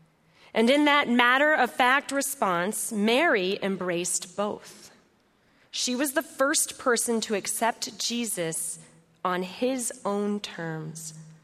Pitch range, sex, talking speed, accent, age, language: 175-230 Hz, female, 105 wpm, American, 30-49, English